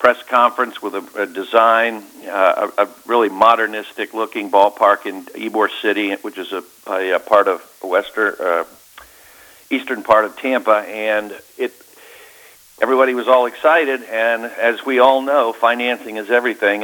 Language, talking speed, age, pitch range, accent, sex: English, 150 wpm, 50-69, 105-130 Hz, American, male